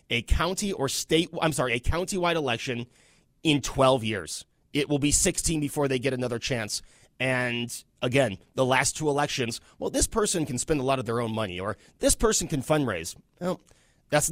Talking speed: 190 wpm